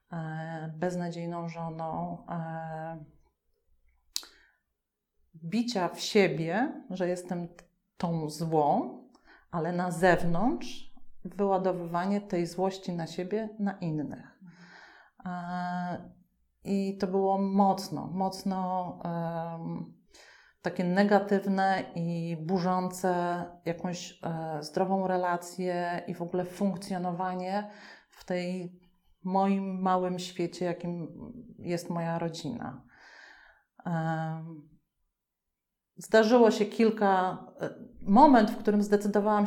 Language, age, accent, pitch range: Polish, 40-59, native, 170-195 Hz